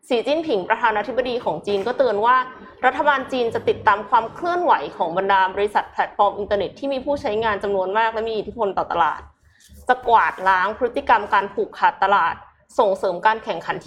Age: 20-39